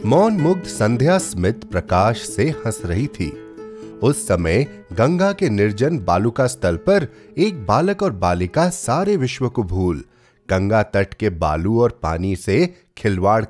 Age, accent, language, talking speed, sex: 30-49, native, Hindi, 150 wpm, male